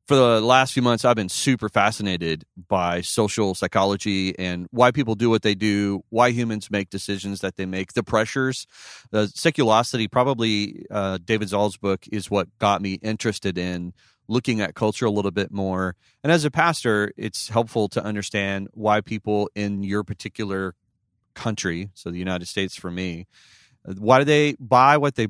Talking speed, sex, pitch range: 175 wpm, male, 95-115 Hz